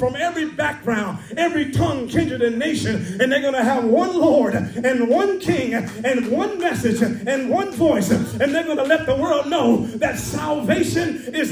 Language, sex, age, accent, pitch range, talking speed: English, male, 30-49, American, 250-345 Hz, 180 wpm